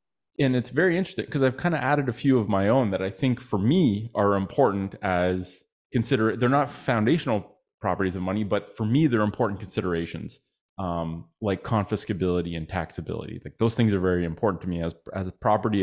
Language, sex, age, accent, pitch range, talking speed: English, male, 30-49, American, 95-115 Hz, 195 wpm